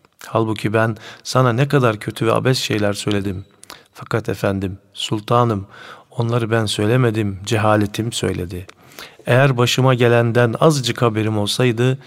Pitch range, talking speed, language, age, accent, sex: 100-125 Hz, 120 wpm, Turkish, 50-69, native, male